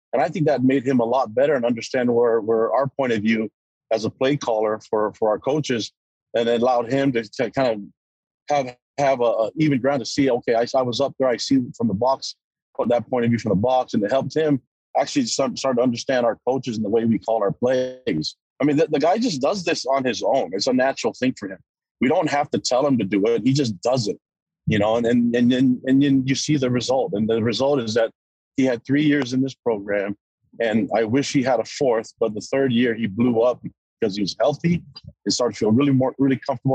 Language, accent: English, American